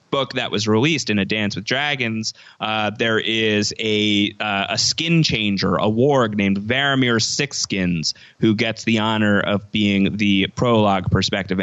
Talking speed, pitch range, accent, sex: 160 wpm, 105-125 Hz, American, male